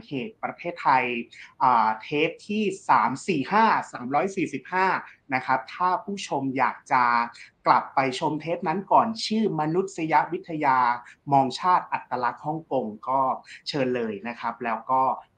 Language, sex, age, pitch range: Thai, male, 30-49, 125-170 Hz